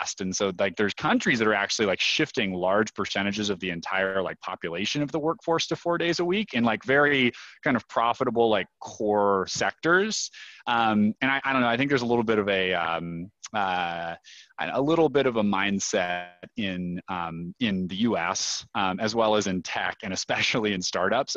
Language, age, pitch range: English, 30-49, 95-120 Hz